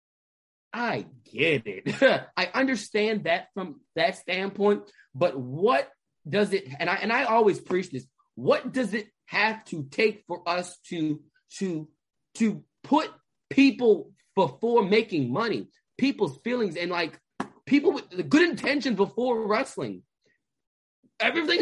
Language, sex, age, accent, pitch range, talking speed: English, male, 30-49, American, 175-245 Hz, 135 wpm